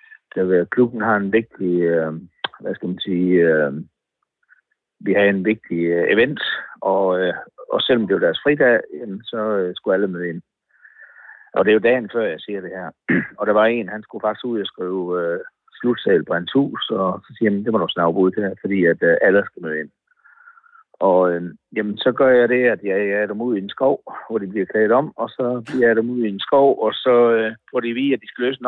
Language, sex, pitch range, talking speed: Danish, male, 100-125 Hz, 220 wpm